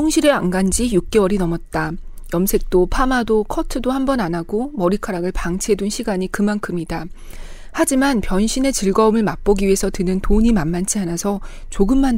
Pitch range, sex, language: 175-220 Hz, female, Korean